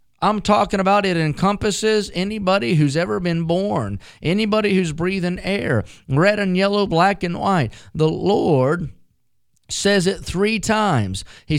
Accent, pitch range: American, 150-195 Hz